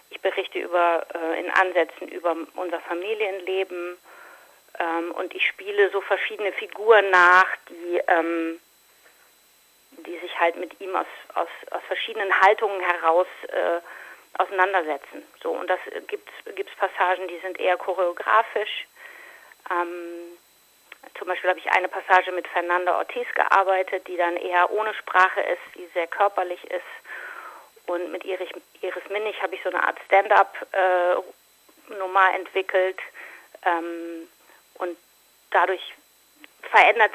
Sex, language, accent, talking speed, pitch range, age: female, German, German, 125 wpm, 175-200 Hz, 40-59